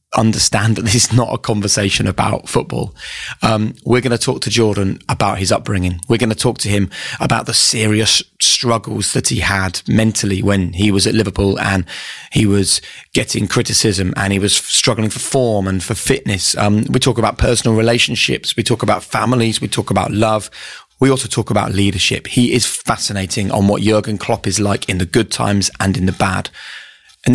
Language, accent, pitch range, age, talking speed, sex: English, British, 95-115 Hz, 20-39, 195 wpm, male